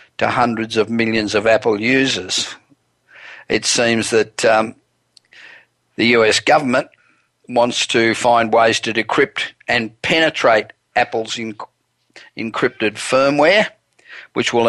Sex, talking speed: male, 115 wpm